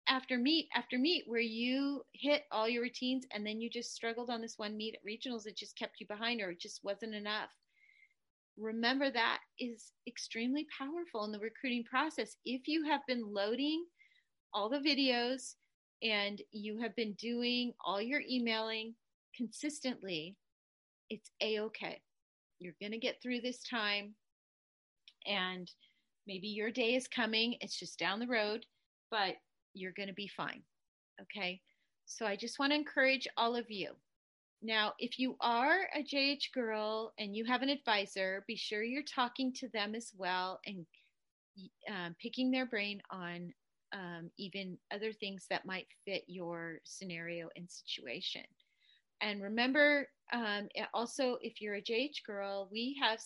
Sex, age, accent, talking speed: female, 30-49, American, 160 wpm